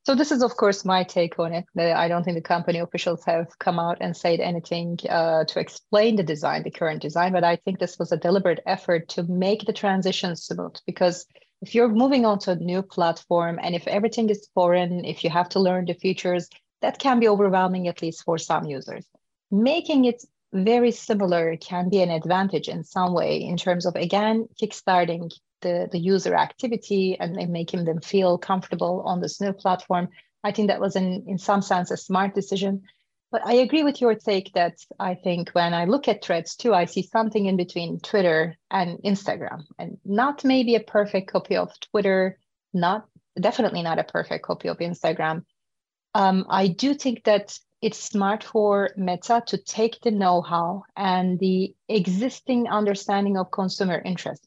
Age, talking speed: 30-49, 190 wpm